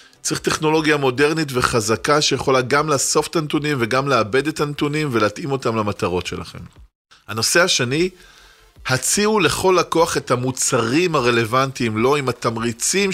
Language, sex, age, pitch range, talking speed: Hebrew, male, 20-39, 115-155 Hz, 130 wpm